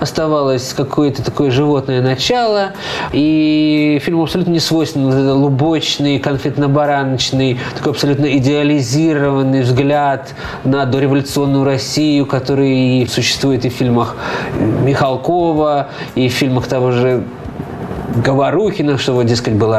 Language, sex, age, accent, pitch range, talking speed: Russian, male, 20-39, native, 130-160 Hz, 110 wpm